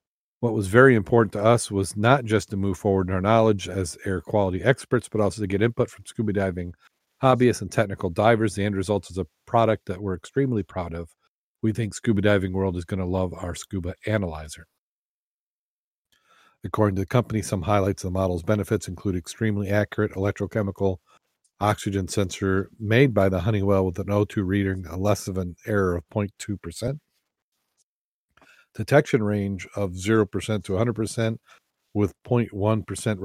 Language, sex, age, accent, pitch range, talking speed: English, male, 40-59, American, 95-110 Hz, 165 wpm